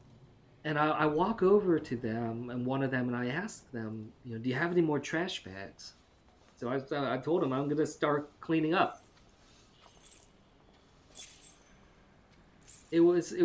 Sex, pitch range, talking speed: male, 110-145 Hz, 155 wpm